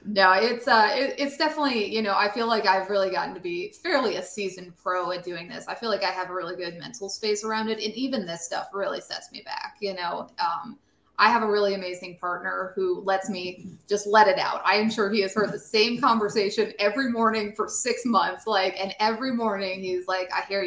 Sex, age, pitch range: female, 20-39, 185-230 Hz